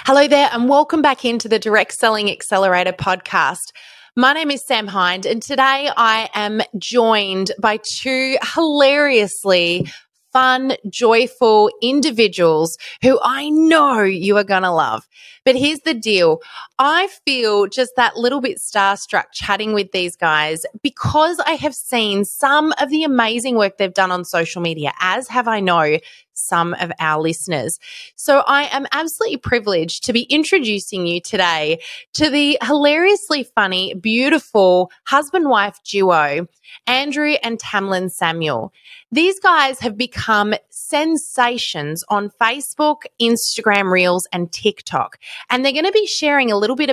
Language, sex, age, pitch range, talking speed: English, female, 20-39, 190-280 Hz, 145 wpm